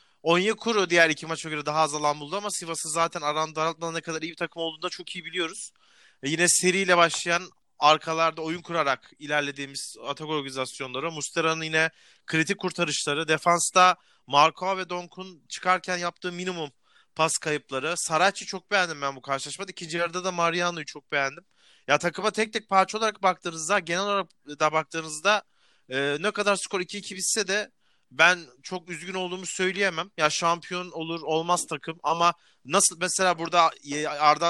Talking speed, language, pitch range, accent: 160 wpm, Turkish, 155-180 Hz, native